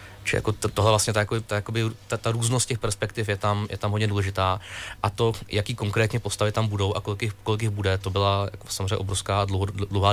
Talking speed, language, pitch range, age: 195 wpm, Czech, 100-105 Hz, 20-39